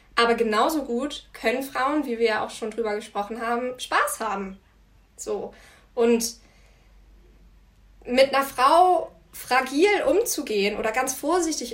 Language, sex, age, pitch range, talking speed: German, female, 20-39, 215-270 Hz, 130 wpm